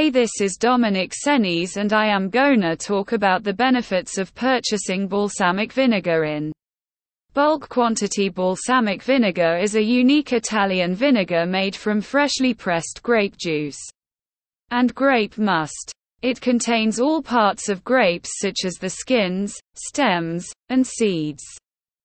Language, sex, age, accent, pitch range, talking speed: English, female, 20-39, British, 185-250 Hz, 130 wpm